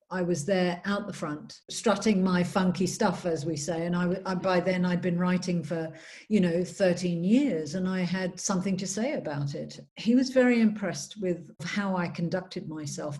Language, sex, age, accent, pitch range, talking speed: English, female, 50-69, British, 180-225 Hz, 185 wpm